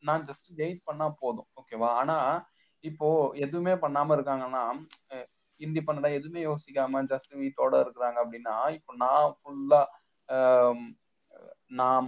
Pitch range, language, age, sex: 125-170 Hz, Tamil, 20-39, male